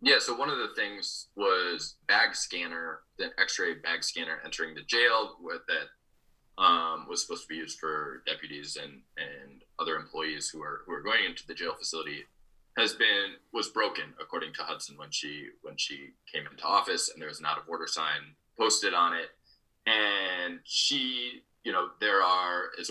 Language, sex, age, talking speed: English, male, 20-39, 180 wpm